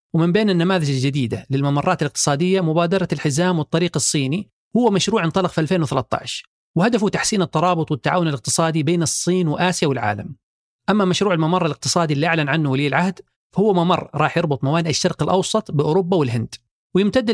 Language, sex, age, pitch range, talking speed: Arabic, male, 30-49, 140-180 Hz, 150 wpm